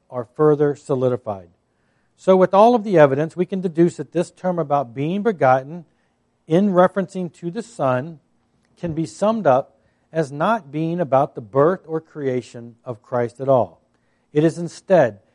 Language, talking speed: English, 165 wpm